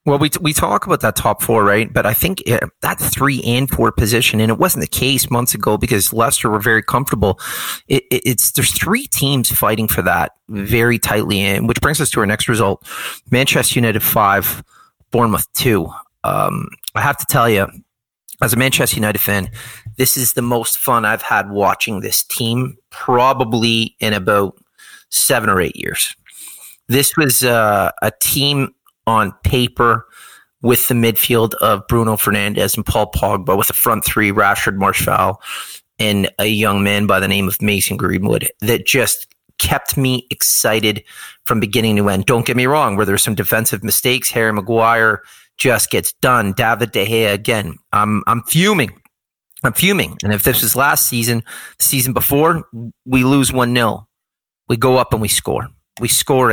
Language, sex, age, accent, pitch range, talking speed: English, male, 30-49, American, 105-130 Hz, 175 wpm